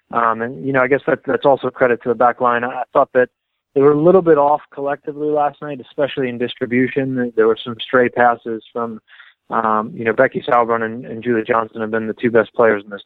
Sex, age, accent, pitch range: male, 20-39, American, 115-130 Hz